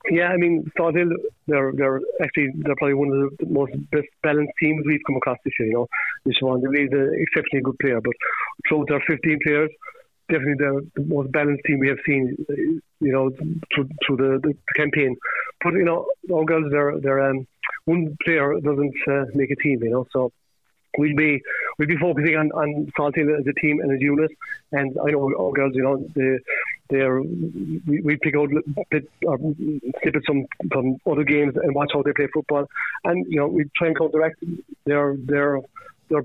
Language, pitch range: English, 140-155 Hz